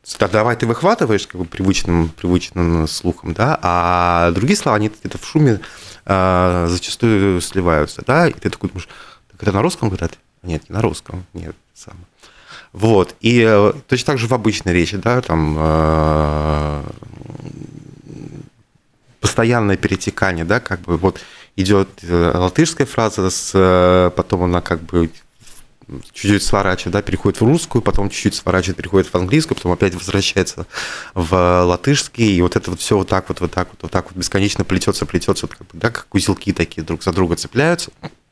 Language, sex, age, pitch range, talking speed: Russian, male, 20-39, 85-105 Hz, 165 wpm